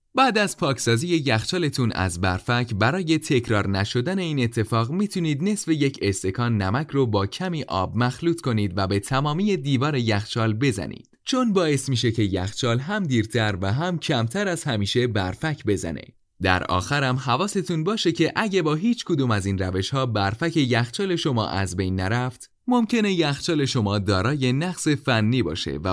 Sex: male